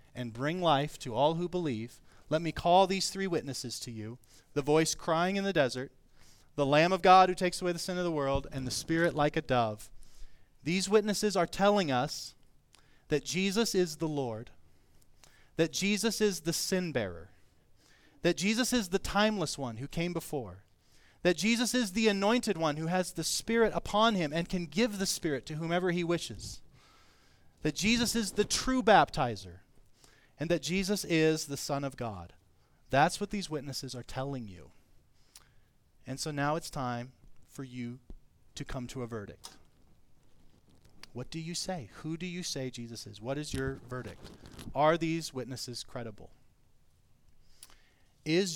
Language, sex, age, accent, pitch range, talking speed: English, male, 30-49, American, 115-170 Hz, 170 wpm